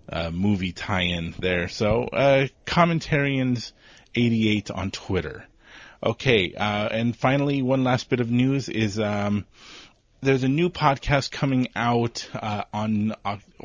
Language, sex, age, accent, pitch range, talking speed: English, male, 30-49, American, 100-120 Hz, 130 wpm